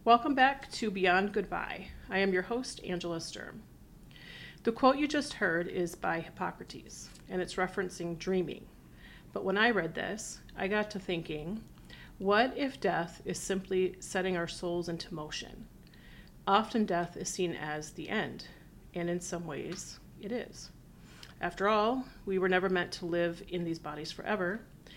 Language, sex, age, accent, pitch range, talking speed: English, female, 40-59, American, 175-200 Hz, 160 wpm